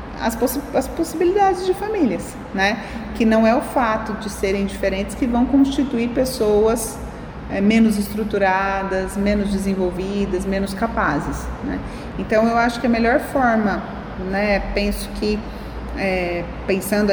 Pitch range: 195-240 Hz